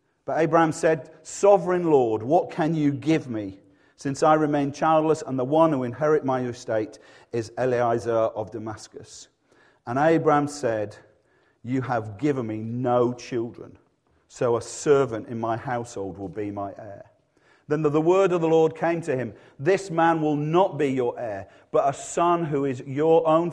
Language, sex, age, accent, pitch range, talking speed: English, male, 40-59, British, 120-160 Hz, 175 wpm